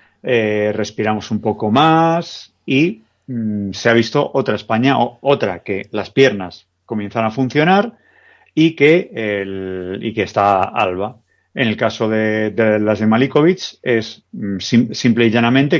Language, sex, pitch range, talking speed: Spanish, male, 100-120 Hz, 160 wpm